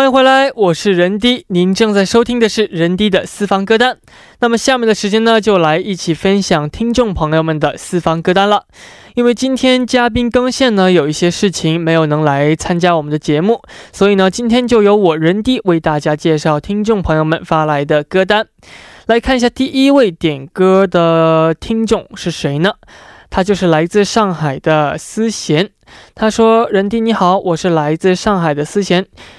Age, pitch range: 20-39, 160-220 Hz